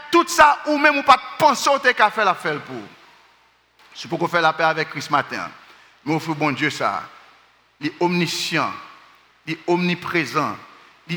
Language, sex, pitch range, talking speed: French, male, 145-185 Hz, 165 wpm